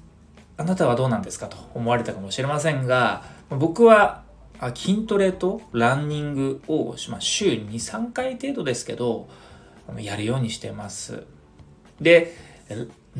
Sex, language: male, Japanese